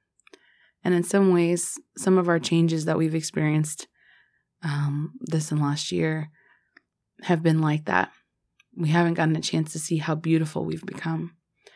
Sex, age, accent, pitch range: female, 20-39, American, 155-180 Hz